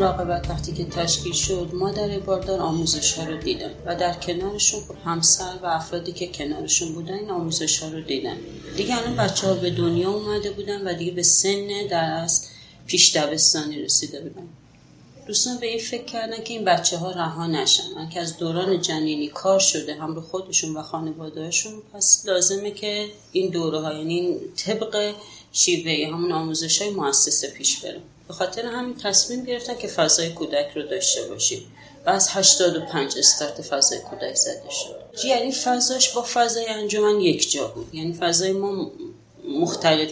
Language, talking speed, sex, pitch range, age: Persian, 160 wpm, female, 165-210 Hz, 30-49